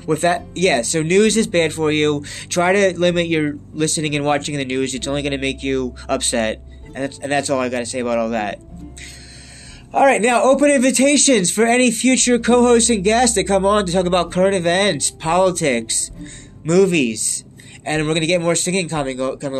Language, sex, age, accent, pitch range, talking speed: English, male, 20-39, American, 135-185 Hz, 205 wpm